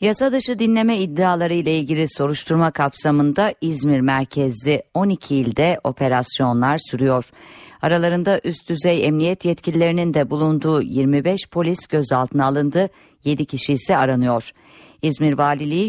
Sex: female